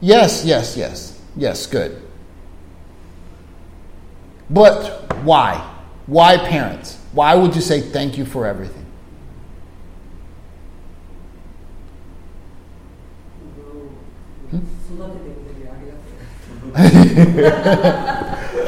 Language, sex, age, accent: Japanese, male, 50-69, American